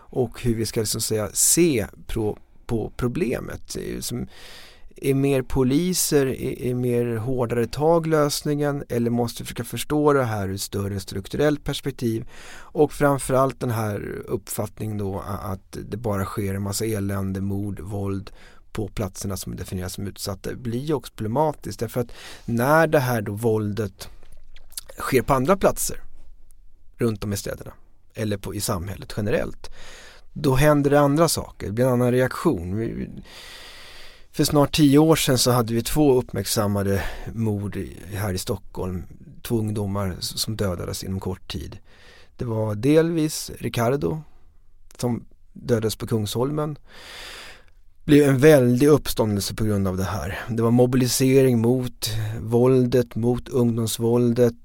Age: 30-49